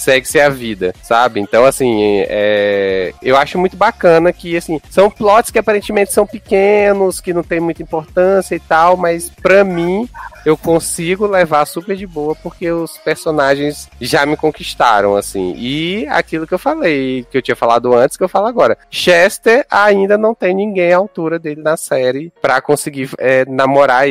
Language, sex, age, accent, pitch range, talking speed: Portuguese, male, 20-39, Brazilian, 100-165 Hz, 175 wpm